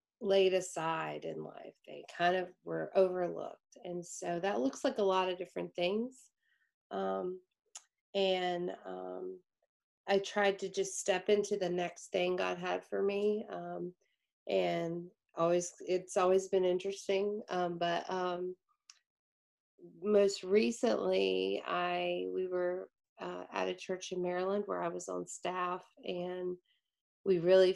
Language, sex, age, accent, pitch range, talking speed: English, female, 30-49, American, 170-200 Hz, 140 wpm